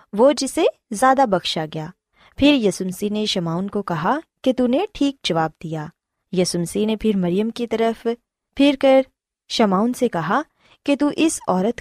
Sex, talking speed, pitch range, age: female, 165 wpm, 185-265 Hz, 20-39